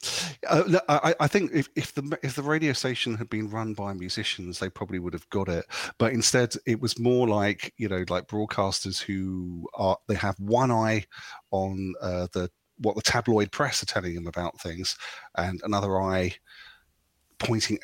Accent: British